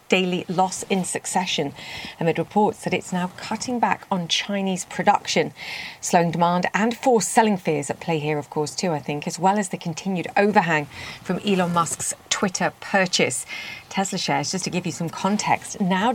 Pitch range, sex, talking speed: 160-205 Hz, female, 180 wpm